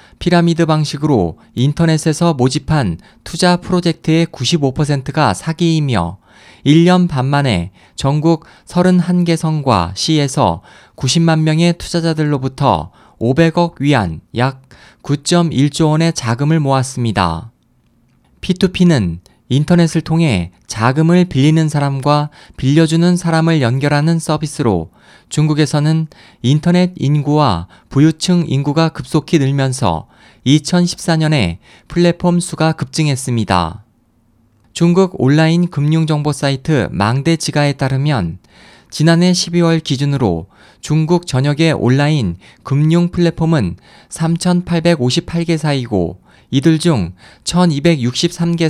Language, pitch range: Korean, 125-165 Hz